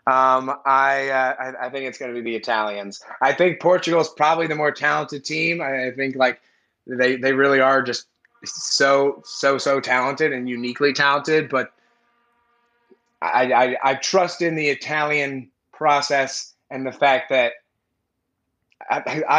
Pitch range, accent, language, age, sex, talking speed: 120-150 Hz, American, English, 20-39, male, 150 wpm